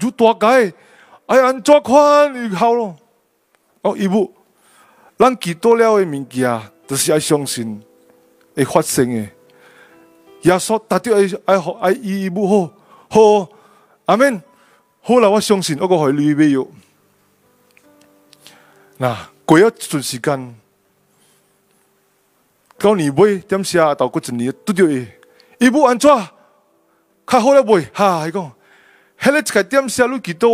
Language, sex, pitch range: Indonesian, male, 145-230 Hz